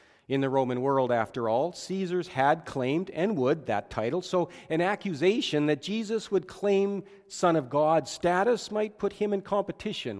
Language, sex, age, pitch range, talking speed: English, male, 40-59, 125-190 Hz, 170 wpm